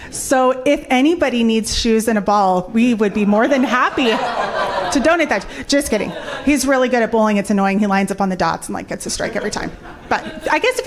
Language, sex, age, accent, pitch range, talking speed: English, female, 30-49, American, 230-290 Hz, 240 wpm